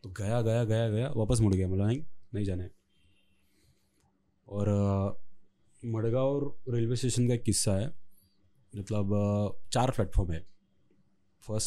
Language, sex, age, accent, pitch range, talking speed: Hindi, male, 30-49, native, 95-130 Hz, 135 wpm